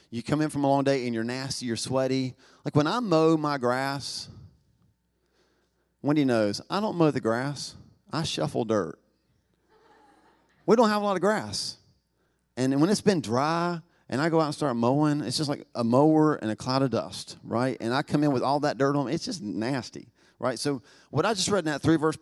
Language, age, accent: English, 40-59, American